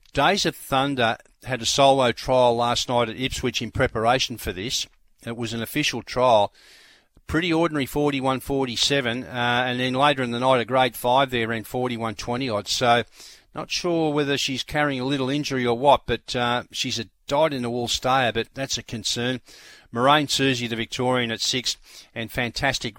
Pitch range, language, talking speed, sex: 115-130 Hz, English, 180 wpm, male